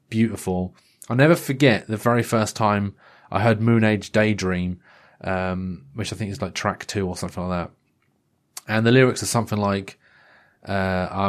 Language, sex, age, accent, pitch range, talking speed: English, male, 30-49, British, 105-150 Hz, 170 wpm